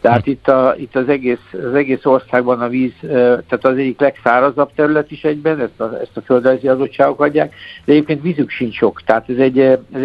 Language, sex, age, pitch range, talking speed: Hungarian, male, 60-79, 120-140 Hz, 195 wpm